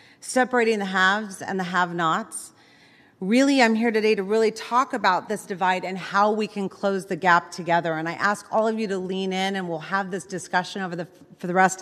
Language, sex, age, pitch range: English, female, 30-49, 180-225 Hz